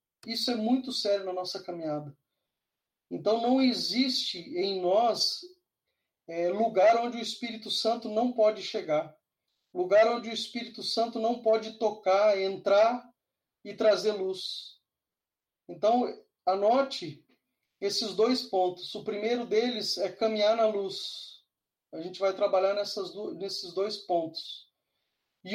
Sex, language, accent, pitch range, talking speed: male, Portuguese, Brazilian, 190-235 Hz, 125 wpm